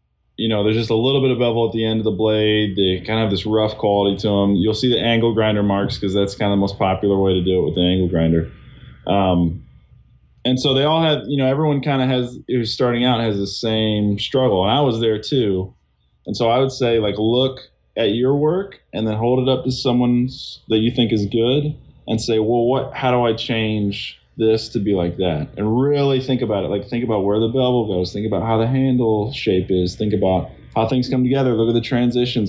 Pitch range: 105-130 Hz